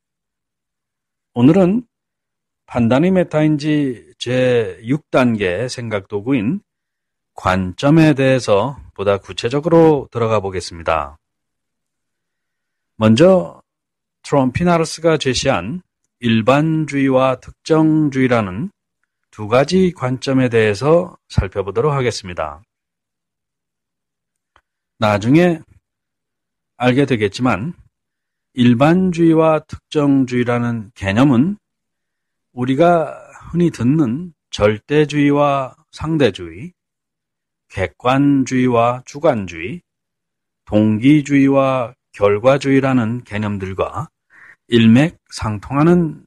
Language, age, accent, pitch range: Korean, 40-59, native, 115-155 Hz